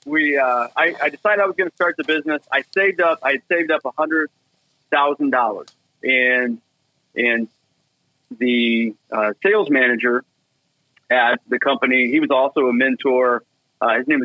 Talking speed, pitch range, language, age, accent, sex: 170 wpm, 120-145 Hz, English, 40-59, American, male